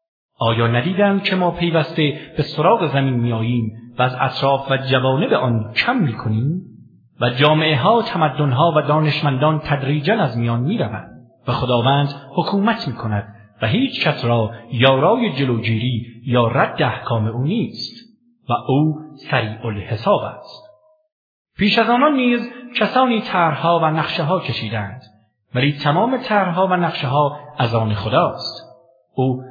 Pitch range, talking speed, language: 120-170 Hz, 145 wpm, English